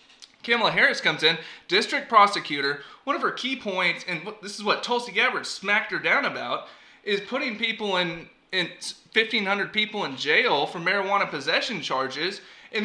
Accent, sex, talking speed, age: American, male, 165 wpm, 20-39